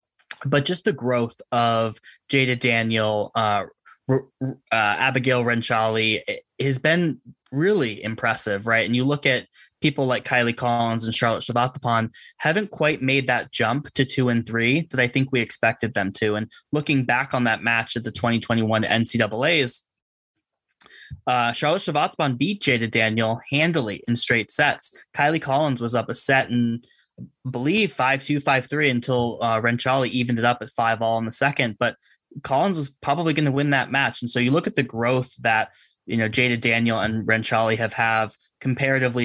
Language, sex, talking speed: English, male, 170 wpm